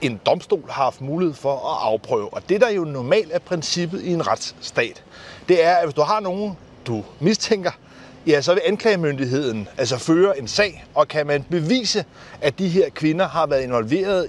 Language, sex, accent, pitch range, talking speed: Danish, male, native, 140-195 Hz, 195 wpm